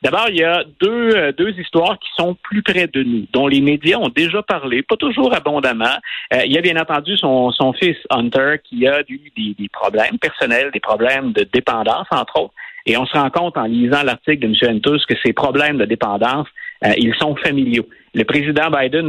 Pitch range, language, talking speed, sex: 120-160 Hz, French, 215 wpm, male